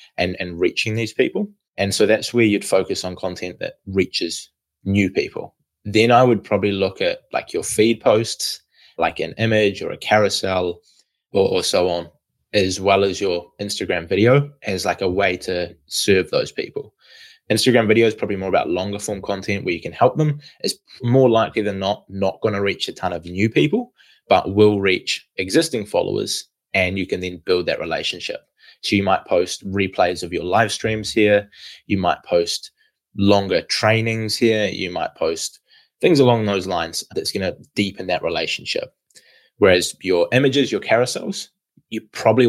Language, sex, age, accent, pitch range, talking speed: English, male, 20-39, Australian, 95-125 Hz, 180 wpm